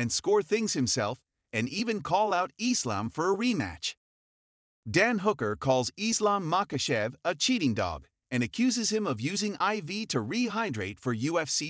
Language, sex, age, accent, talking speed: English, male, 40-59, American, 155 wpm